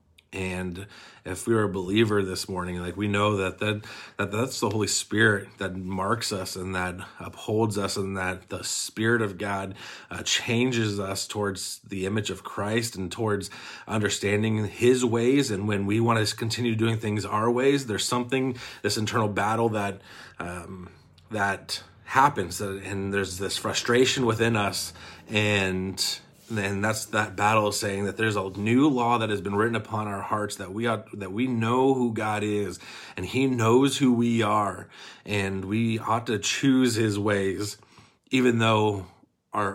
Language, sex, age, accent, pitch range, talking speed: English, male, 30-49, American, 95-115 Hz, 170 wpm